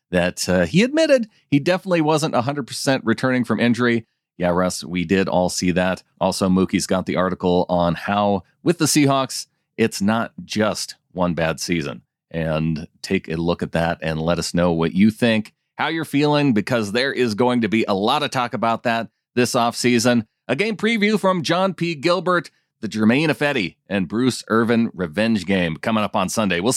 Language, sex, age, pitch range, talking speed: English, male, 30-49, 90-145 Hz, 190 wpm